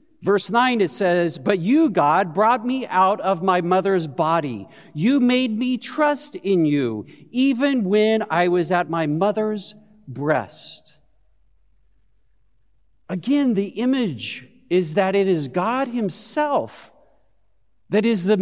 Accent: American